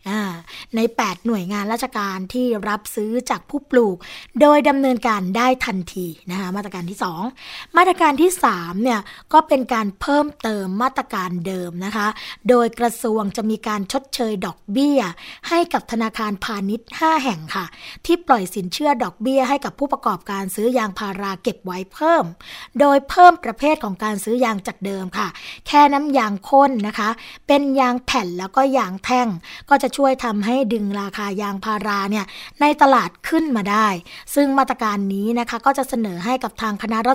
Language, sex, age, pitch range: Thai, female, 20-39, 200-265 Hz